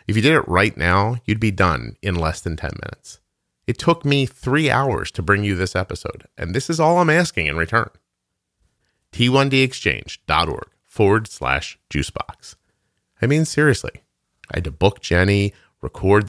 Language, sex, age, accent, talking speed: English, male, 30-49, American, 165 wpm